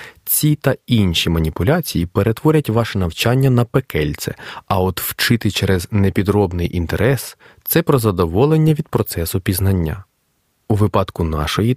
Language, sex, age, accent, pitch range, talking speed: Ukrainian, male, 30-49, native, 90-130 Hz, 125 wpm